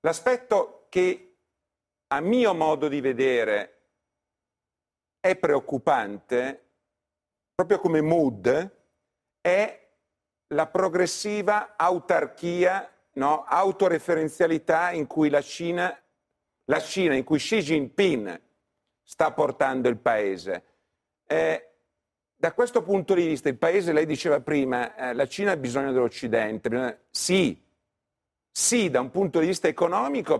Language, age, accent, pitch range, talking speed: Italian, 50-69, native, 130-195 Hz, 110 wpm